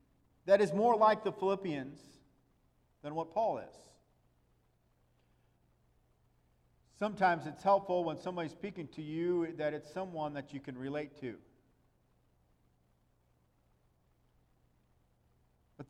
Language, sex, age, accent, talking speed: English, male, 50-69, American, 100 wpm